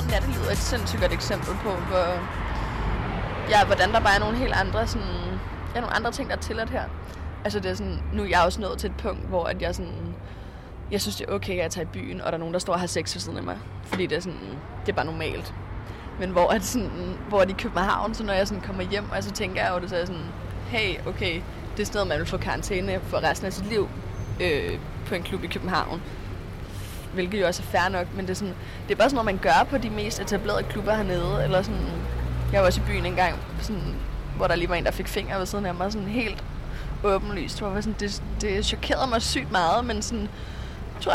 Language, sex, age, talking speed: Danish, female, 20-39, 255 wpm